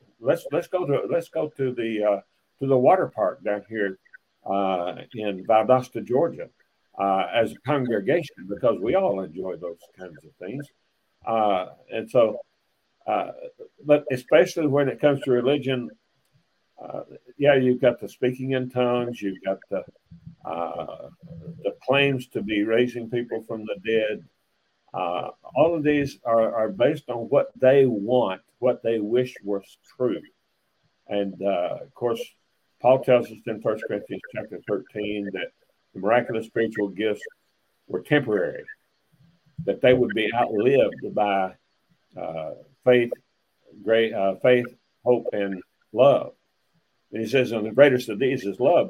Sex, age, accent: male, 60-79, American